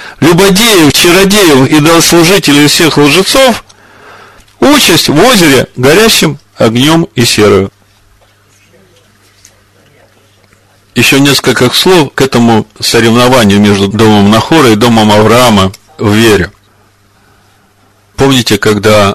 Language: Russian